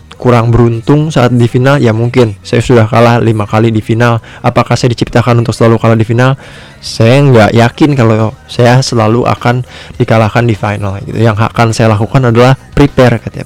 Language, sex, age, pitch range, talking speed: Indonesian, male, 20-39, 110-130 Hz, 180 wpm